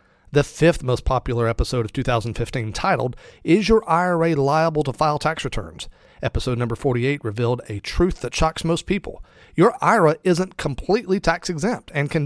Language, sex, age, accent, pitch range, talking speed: English, male, 40-59, American, 125-160 Hz, 160 wpm